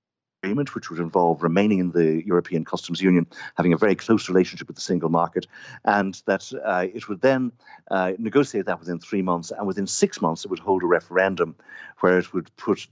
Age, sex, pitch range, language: 50-69, male, 85-100 Hz, English